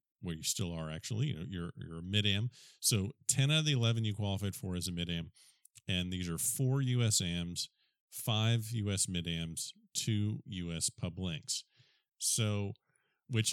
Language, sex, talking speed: English, male, 175 wpm